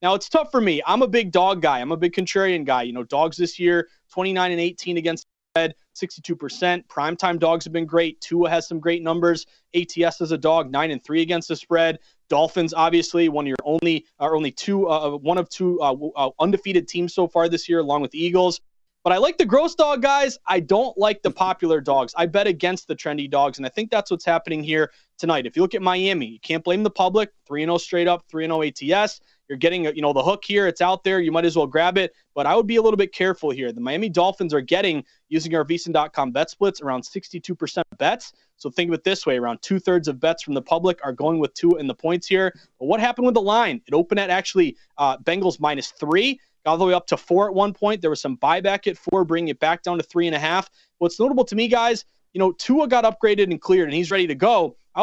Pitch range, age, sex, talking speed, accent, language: 160-200 Hz, 30-49, male, 255 wpm, American, English